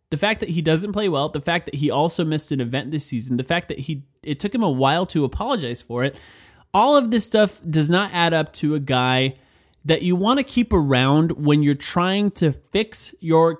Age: 20-39